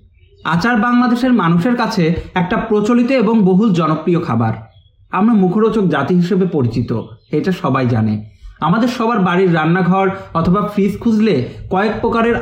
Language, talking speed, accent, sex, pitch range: Bengali, 130 wpm, native, male, 140-220 Hz